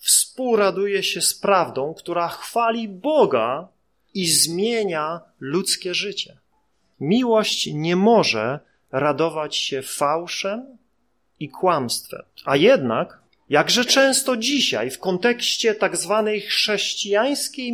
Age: 40-59